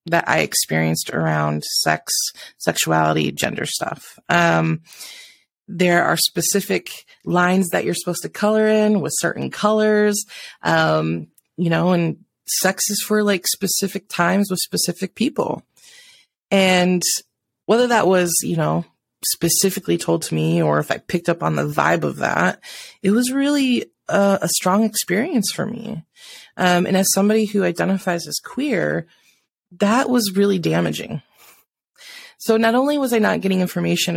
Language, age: English, 30-49